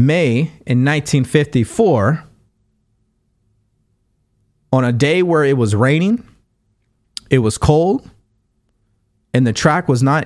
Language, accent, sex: English, American, male